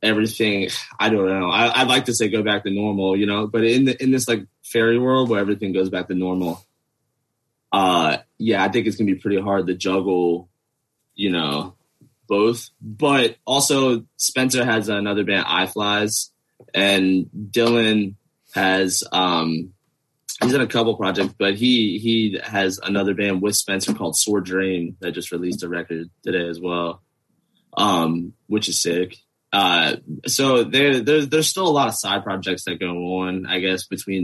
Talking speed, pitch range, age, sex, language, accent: 175 wpm, 90-115 Hz, 20-39, male, English, American